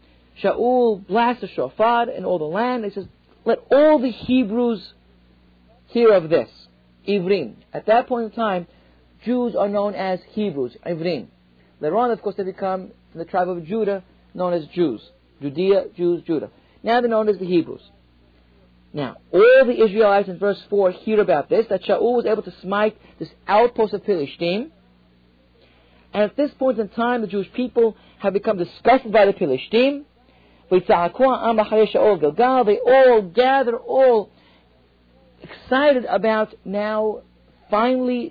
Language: English